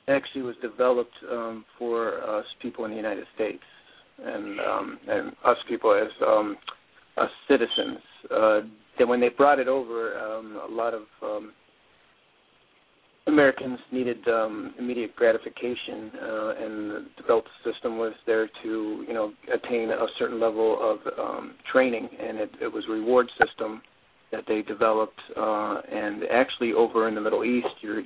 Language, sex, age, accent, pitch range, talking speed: English, male, 40-59, American, 110-125 Hz, 155 wpm